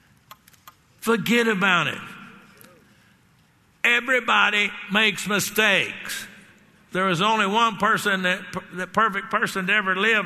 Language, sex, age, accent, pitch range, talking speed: English, male, 60-79, American, 165-215 Hz, 105 wpm